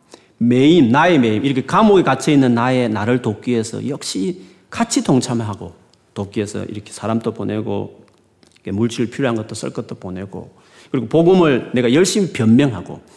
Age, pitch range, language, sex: 40-59, 105-145 Hz, Korean, male